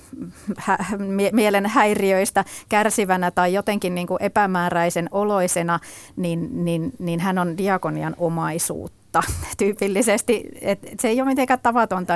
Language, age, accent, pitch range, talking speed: Finnish, 30-49, native, 170-200 Hz, 110 wpm